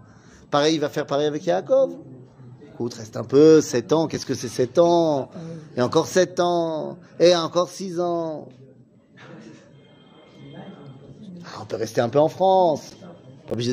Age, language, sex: 30-49, French, male